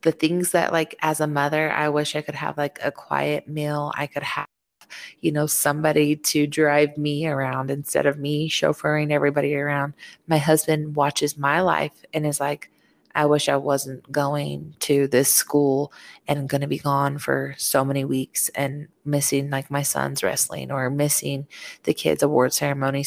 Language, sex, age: English, female, 20-39